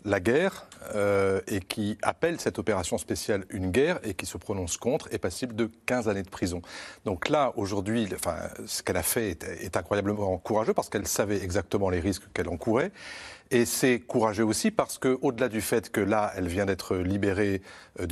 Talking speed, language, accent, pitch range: 195 wpm, French, French, 95-115 Hz